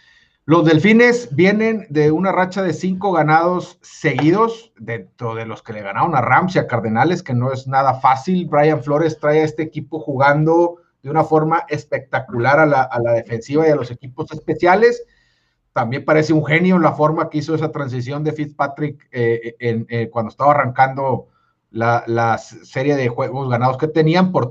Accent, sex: Mexican, male